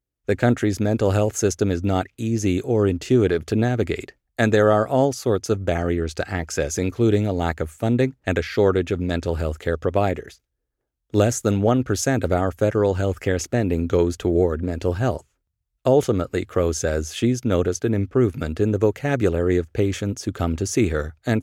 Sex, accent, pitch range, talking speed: male, American, 85-115 Hz, 180 wpm